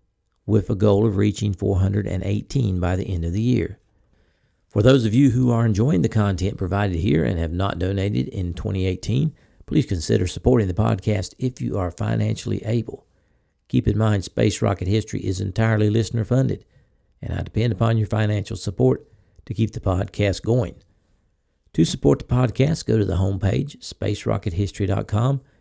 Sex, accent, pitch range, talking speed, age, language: male, American, 95-120 Hz, 160 wpm, 50-69, English